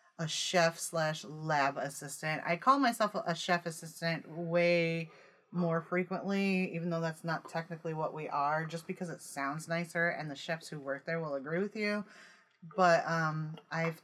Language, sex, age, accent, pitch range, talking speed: English, female, 30-49, American, 155-185 Hz, 170 wpm